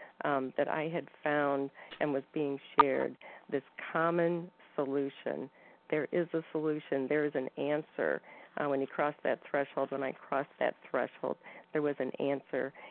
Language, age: English, 50-69